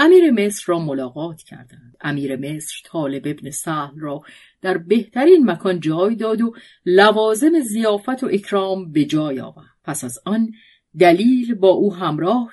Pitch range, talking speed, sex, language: 150-240 Hz, 150 wpm, female, Persian